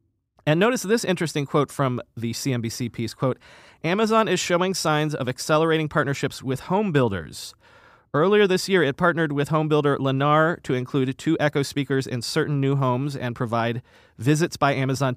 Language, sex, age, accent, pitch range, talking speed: English, male, 30-49, American, 120-155 Hz, 170 wpm